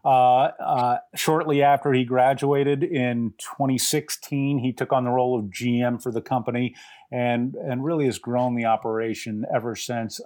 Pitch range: 115-140 Hz